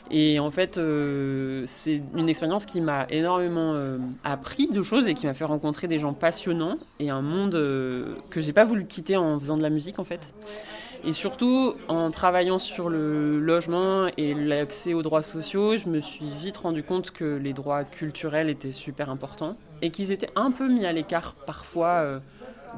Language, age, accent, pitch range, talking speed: French, 20-39, French, 145-170 Hz, 190 wpm